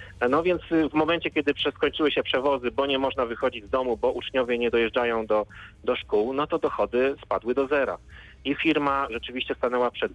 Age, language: 40-59, Polish